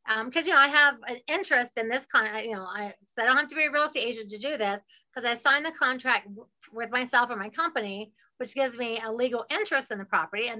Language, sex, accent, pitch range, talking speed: English, female, American, 230-290 Hz, 285 wpm